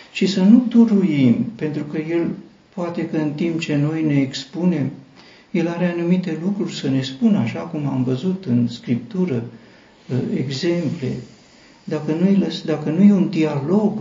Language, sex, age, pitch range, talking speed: Romanian, male, 60-79, 135-175 Hz, 145 wpm